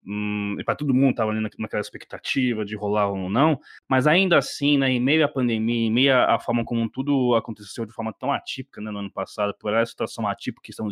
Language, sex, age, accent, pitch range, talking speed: Portuguese, male, 20-39, Brazilian, 110-140 Hz, 230 wpm